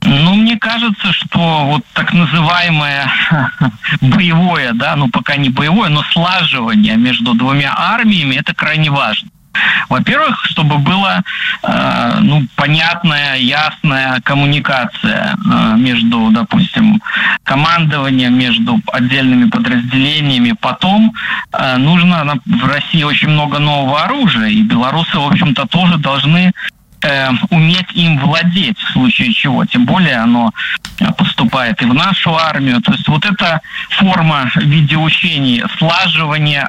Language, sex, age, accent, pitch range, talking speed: Russian, male, 20-39, native, 140-195 Hz, 120 wpm